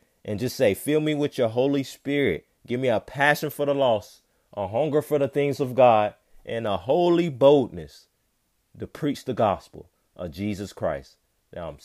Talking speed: 180 wpm